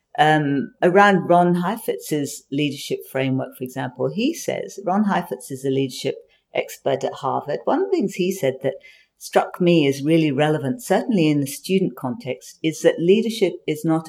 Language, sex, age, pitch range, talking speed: English, female, 50-69, 145-190 Hz, 170 wpm